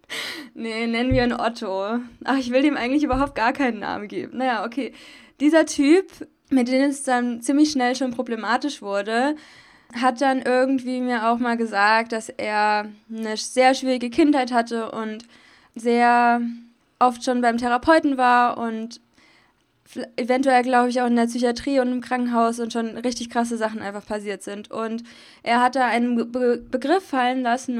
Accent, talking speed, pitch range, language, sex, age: German, 165 wpm, 225-260 Hz, German, female, 20-39